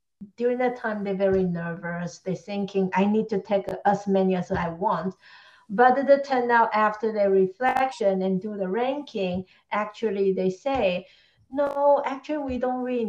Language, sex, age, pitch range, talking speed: English, female, 50-69, 190-240 Hz, 165 wpm